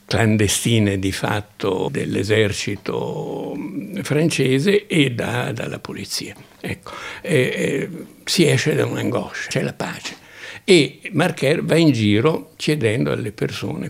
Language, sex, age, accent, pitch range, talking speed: Italian, male, 60-79, native, 100-120 Hz, 115 wpm